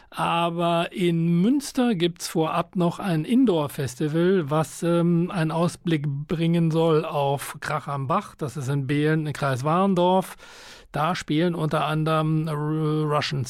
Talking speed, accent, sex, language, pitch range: 140 wpm, German, male, German, 145-170 Hz